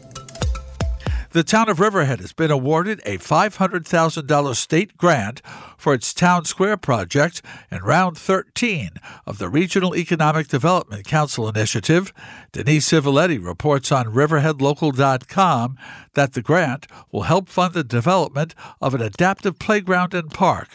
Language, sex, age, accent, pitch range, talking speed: English, male, 60-79, American, 130-175 Hz, 130 wpm